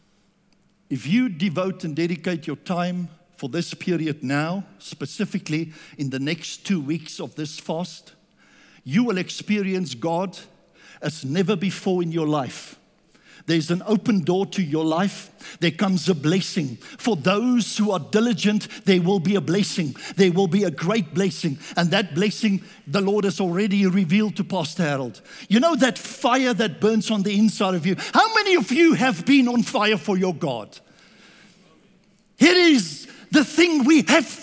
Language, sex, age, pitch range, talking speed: English, male, 60-79, 175-225 Hz, 165 wpm